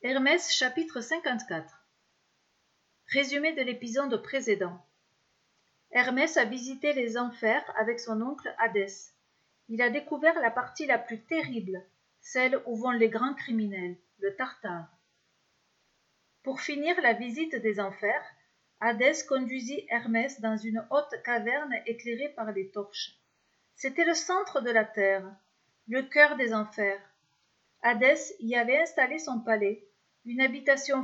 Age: 40-59